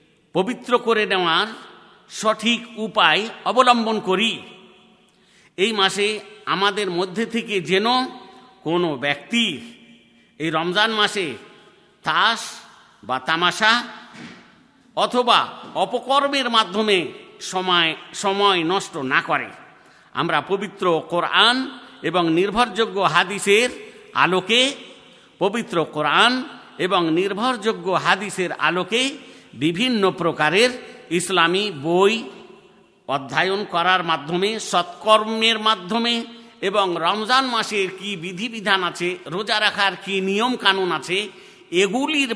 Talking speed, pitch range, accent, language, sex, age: 75 wpm, 175-230 Hz, native, Bengali, male, 50-69